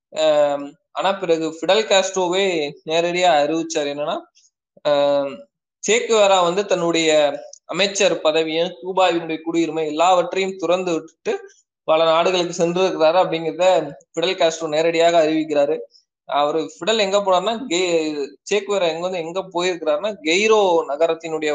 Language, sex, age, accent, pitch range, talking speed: Tamil, male, 20-39, native, 155-185 Hz, 105 wpm